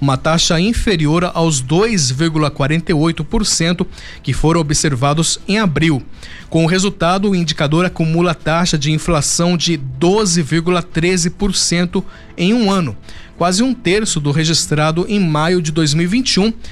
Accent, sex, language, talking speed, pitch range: Brazilian, male, Portuguese, 120 wpm, 155-195 Hz